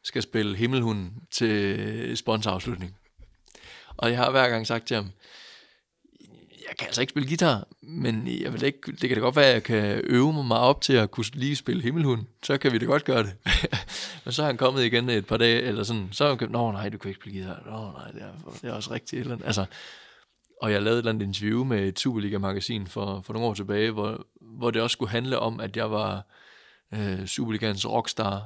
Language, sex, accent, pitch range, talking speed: Danish, male, native, 105-125 Hz, 220 wpm